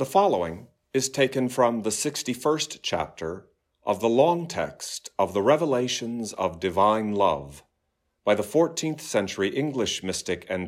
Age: 50-69